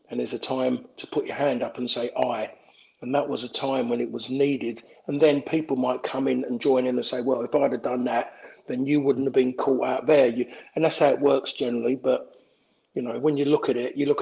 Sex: male